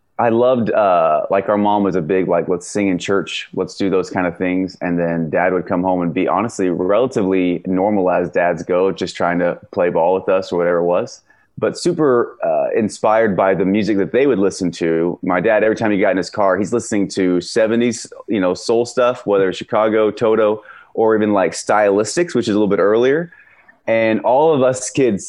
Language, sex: English, male